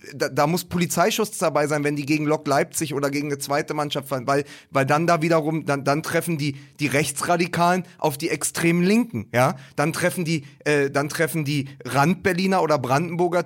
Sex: male